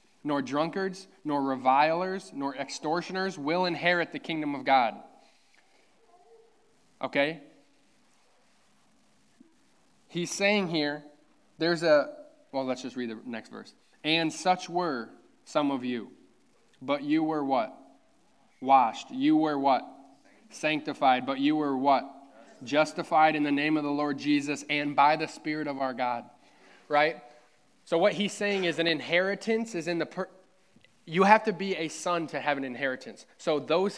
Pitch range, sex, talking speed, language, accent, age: 140-175 Hz, male, 145 wpm, English, American, 20-39